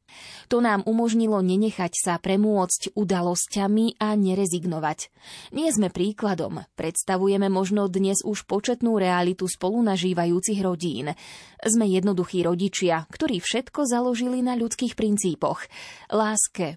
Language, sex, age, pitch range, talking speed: Slovak, female, 20-39, 180-230 Hz, 105 wpm